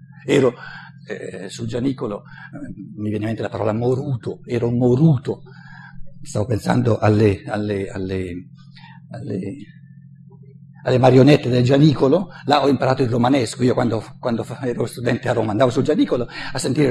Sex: male